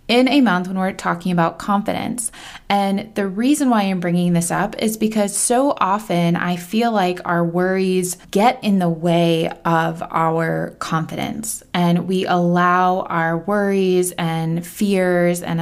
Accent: American